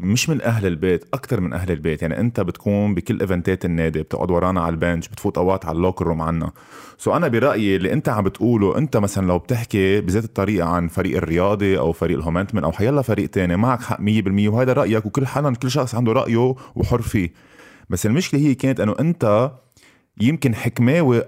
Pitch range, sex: 95-125 Hz, male